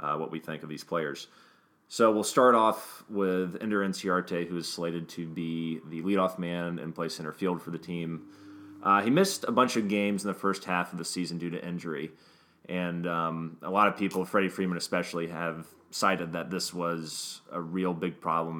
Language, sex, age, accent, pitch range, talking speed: English, male, 30-49, American, 85-95 Hz, 205 wpm